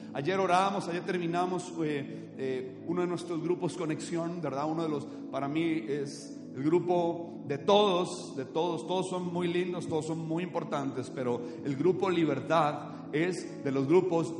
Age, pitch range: 40-59, 140-175 Hz